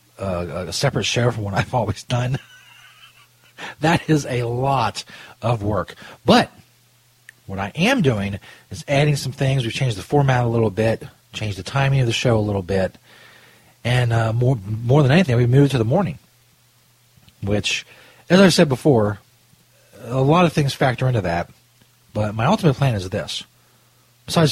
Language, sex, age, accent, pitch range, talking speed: English, male, 40-59, American, 105-135 Hz, 170 wpm